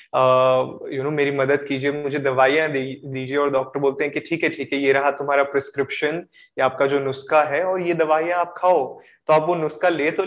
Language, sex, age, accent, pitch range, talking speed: Hindi, male, 20-39, native, 135-170 Hz, 240 wpm